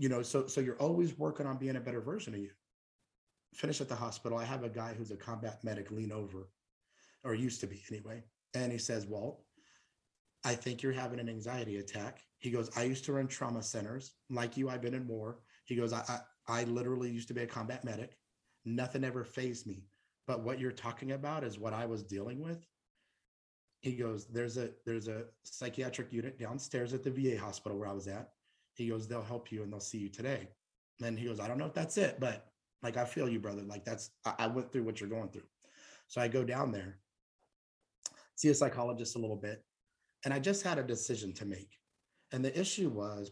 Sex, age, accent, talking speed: male, 30-49, American, 225 wpm